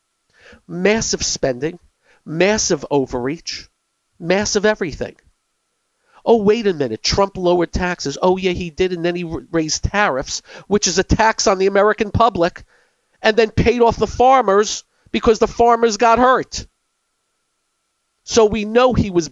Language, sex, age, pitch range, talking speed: English, male, 50-69, 180-235 Hz, 145 wpm